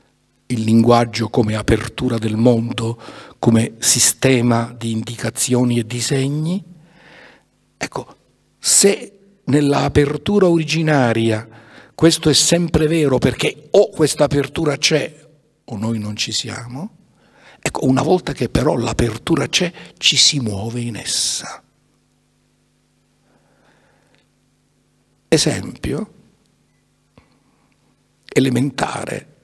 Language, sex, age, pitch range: Italian, male, 60-79, 120-165 Hz